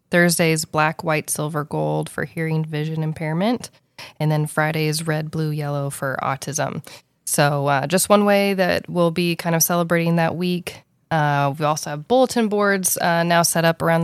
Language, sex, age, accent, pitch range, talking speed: English, female, 20-39, American, 150-175 Hz, 175 wpm